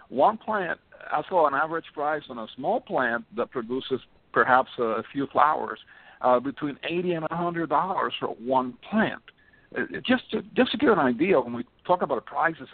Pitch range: 125-180 Hz